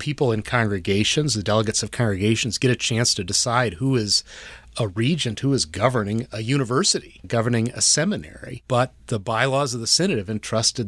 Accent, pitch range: American, 105-125 Hz